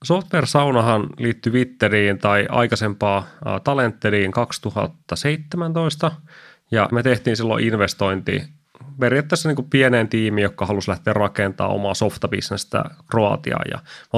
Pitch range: 105-130 Hz